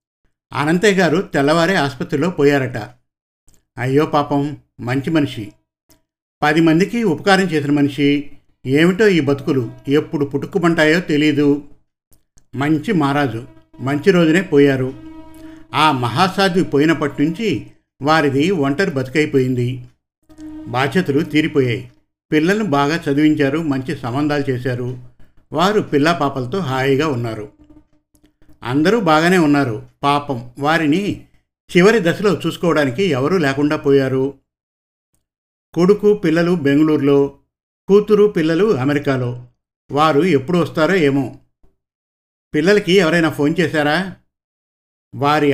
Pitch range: 130-165 Hz